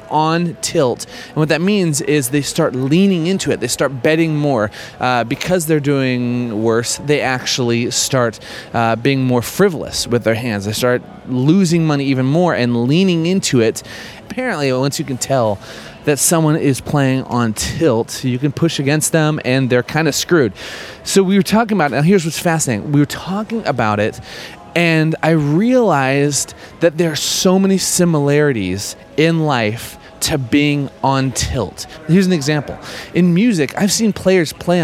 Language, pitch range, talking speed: English, 125-170 Hz, 170 wpm